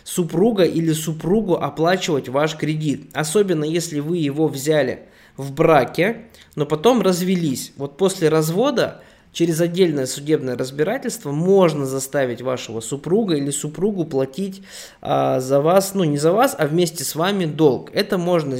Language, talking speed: Russian, 140 wpm